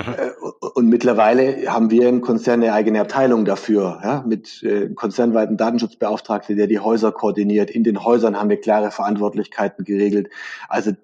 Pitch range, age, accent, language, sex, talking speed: 105-125 Hz, 40-59, German, German, male, 150 wpm